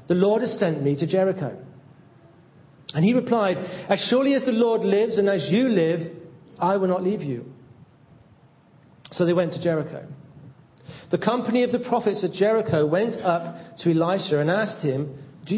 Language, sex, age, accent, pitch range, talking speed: English, male, 40-59, British, 145-195 Hz, 175 wpm